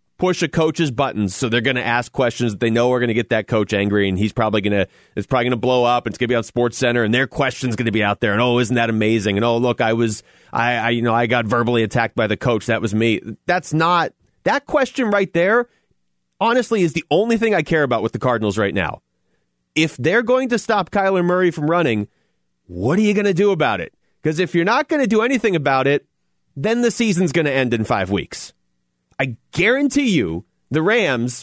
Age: 30-49